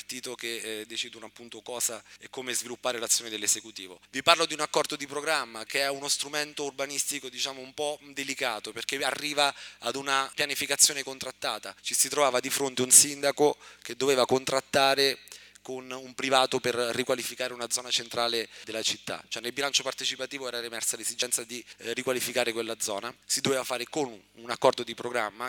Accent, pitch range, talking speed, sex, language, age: native, 120-140 Hz, 165 wpm, male, Italian, 30-49